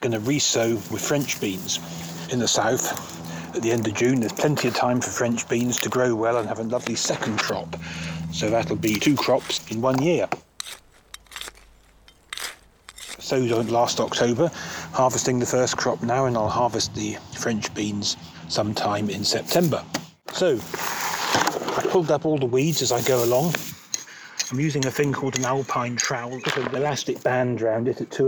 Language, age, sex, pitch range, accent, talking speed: English, 40-59, male, 110-130 Hz, British, 180 wpm